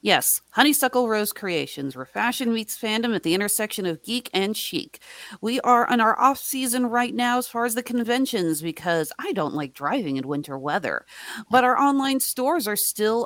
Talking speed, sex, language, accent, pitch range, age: 185 wpm, female, English, American, 185-250 Hz, 40-59